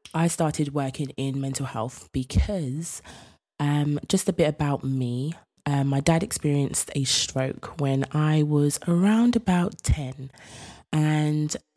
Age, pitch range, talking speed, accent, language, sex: 20-39, 135-155 Hz, 135 wpm, British, English, female